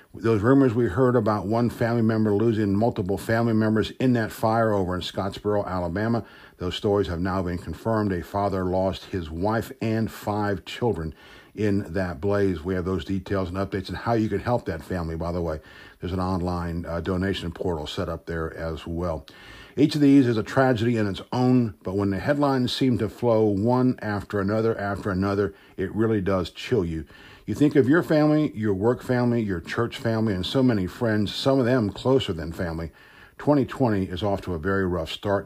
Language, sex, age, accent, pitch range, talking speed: English, male, 50-69, American, 95-125 Hz, 200 wpm